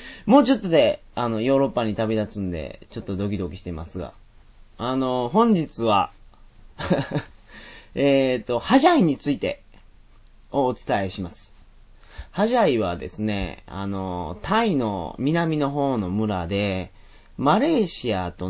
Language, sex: Japanese, male